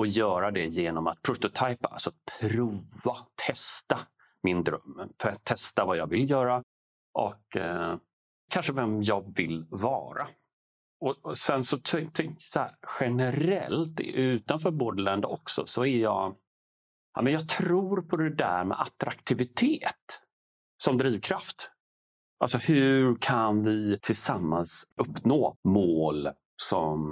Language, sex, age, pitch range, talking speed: Swedish, male, 40-59, 90-125 Hz, 125 wpm